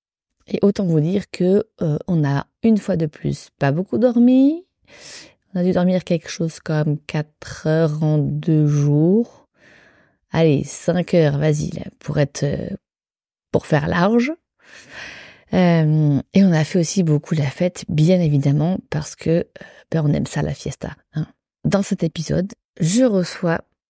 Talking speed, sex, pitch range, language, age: 160 wpm, female, 155-210 Hz, French, 30-49